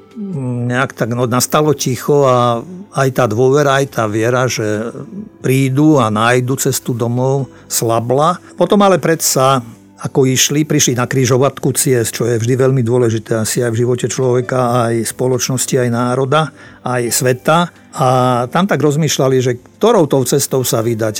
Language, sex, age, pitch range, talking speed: Slovak, male, 50-69, 120-150 Hz, 155 wpm